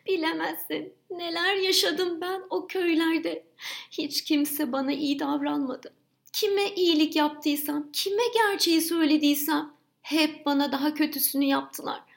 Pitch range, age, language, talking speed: 205-330 Hz, 30-49, Turkish, 110 wpm